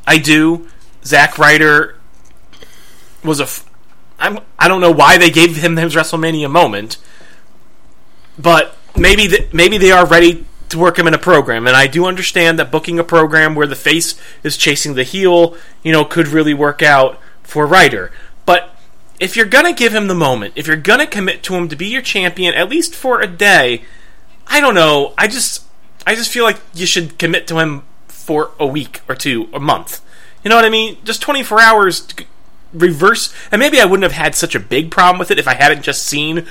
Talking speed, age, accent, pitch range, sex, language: 200 wpm, 30-49, American, 150-200 Hz, male, English